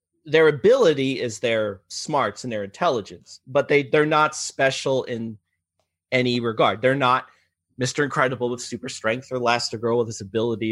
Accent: American